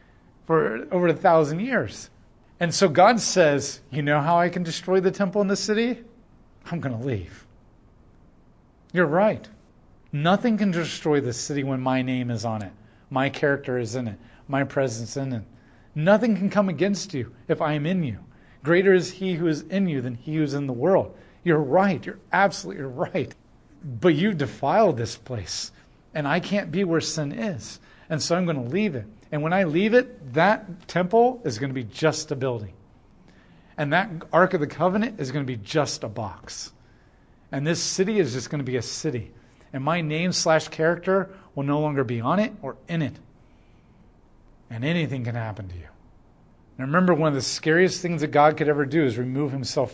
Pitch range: 125-180 Hz